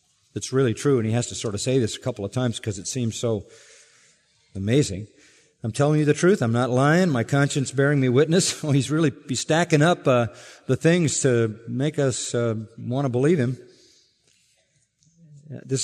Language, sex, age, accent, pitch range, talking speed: English, male, 40-59, American, 120-150 Hz, 195 wpm